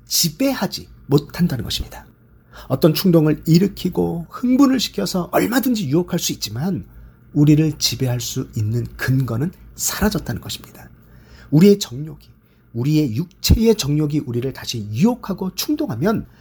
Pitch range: 120-205 Hz